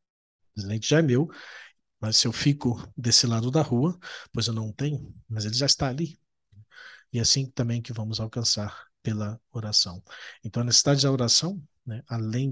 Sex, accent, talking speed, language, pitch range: male, Brazilian, 175 wpm, Portuguese, 110-130 Hz